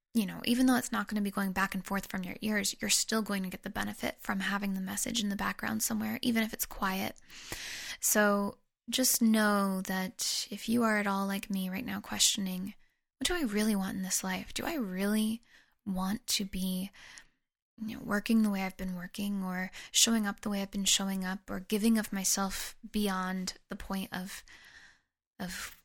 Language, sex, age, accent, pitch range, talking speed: English, female, 10-29, American, 195-225 Hz, 200 wpm